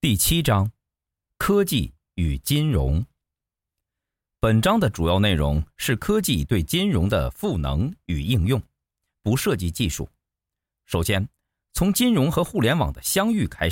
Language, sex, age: Chinese, male, 50-69